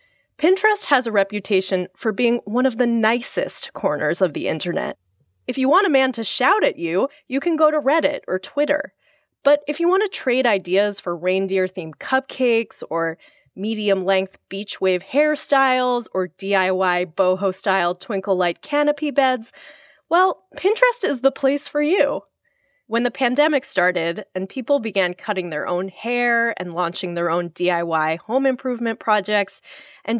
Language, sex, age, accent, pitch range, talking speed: English, female, 20-39, American, 190-285 Hz, 155 wpm